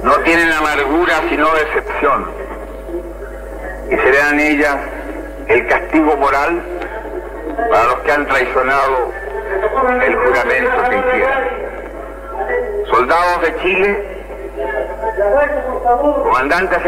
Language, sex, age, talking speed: Spanish, male, 60-79, 85 wpm